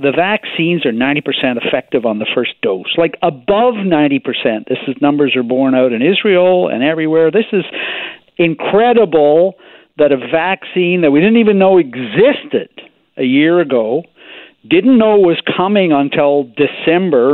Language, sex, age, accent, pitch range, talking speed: English, male, 50-69, American, 130-175 Hz, 150 wpm